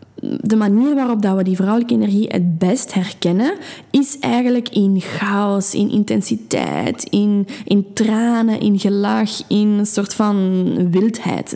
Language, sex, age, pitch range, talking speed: Dutch, female, 10-29, 190-235 Hz, 135 wpm